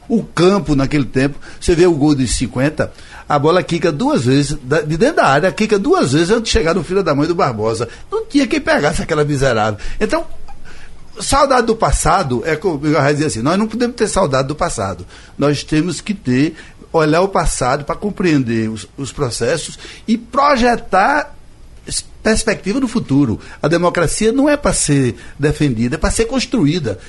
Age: 60-79